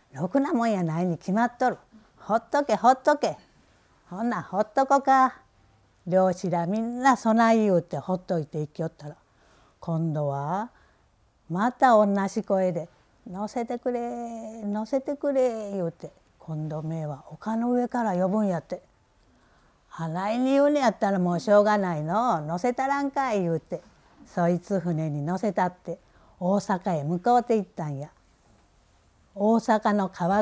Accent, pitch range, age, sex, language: American, 165-230 Hz, 50-69, female, Japanese